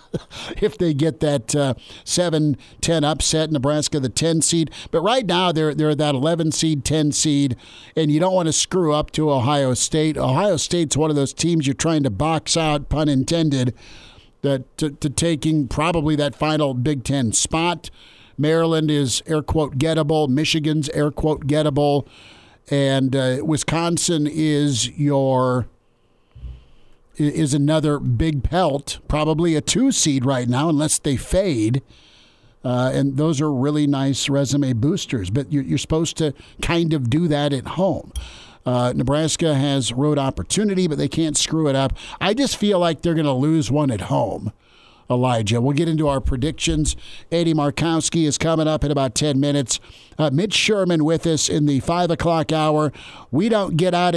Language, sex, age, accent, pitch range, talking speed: English, male, 50-69, American, 135-160 Hz, 165 wpm